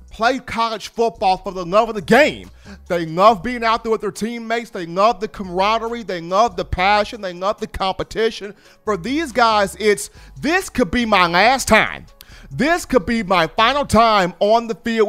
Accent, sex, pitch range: American, male, 190-235 Hz